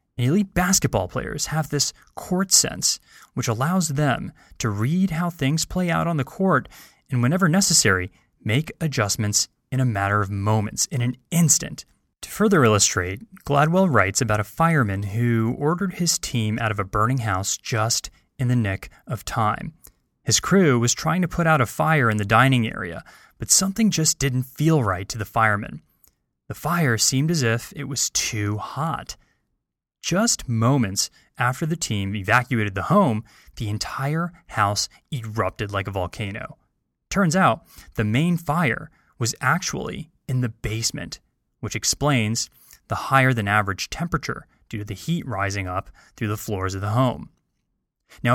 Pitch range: 110-160 Hz